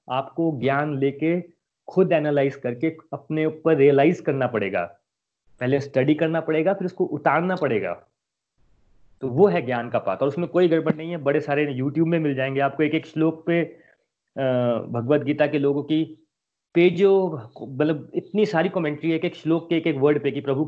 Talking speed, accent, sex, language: 175 wpm, native, male, Hindi